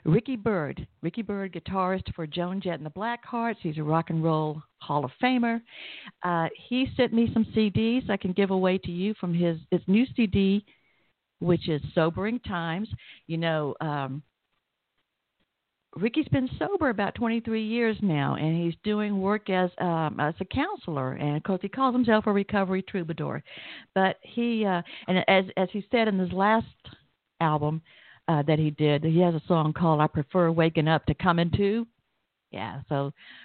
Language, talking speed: English, 180 wpm